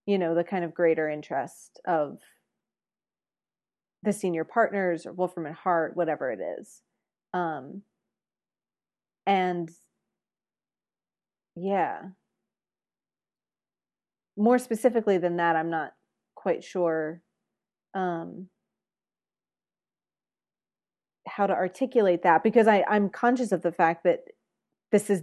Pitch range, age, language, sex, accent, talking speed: 170-205 Hz, 30-49, English, female, American, 100 wpm